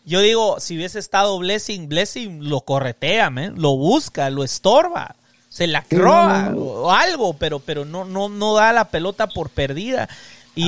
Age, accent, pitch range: 30-49, Mexican, 140-190 Hz